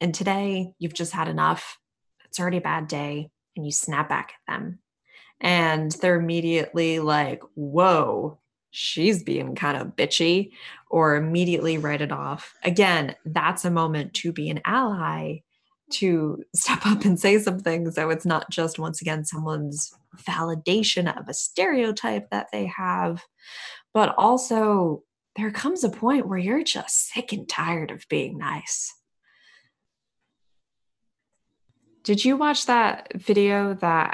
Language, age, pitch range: English, 20-39, 155-195 Hz